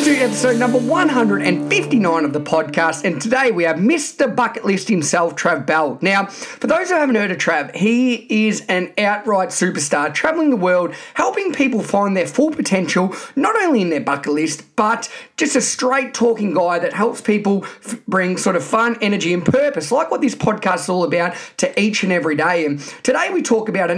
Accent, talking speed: Australian, 200 wpm